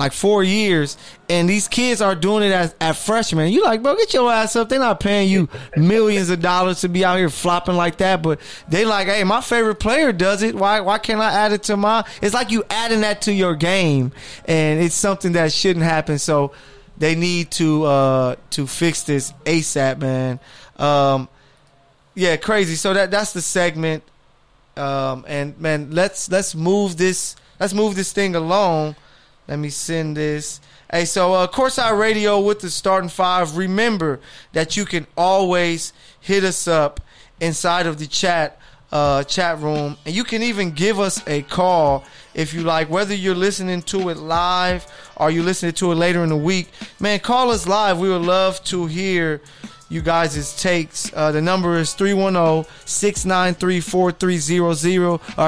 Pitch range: 155-195 Hz